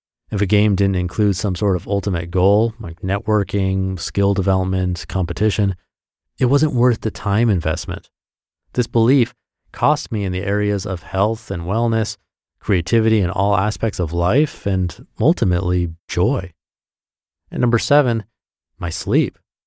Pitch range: 90-115 Hz